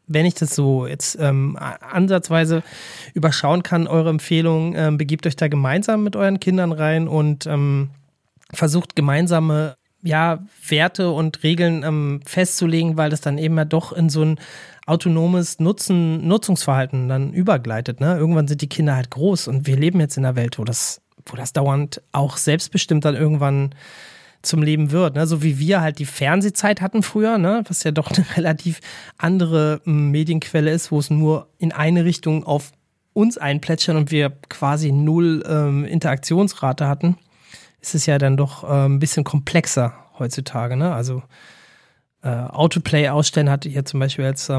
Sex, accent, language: male, German, German